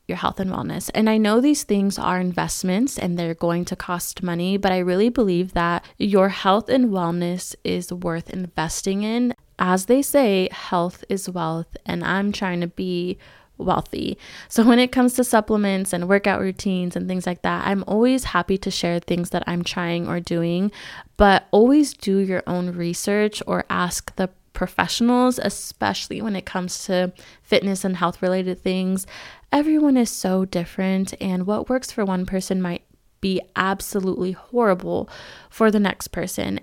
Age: 20-39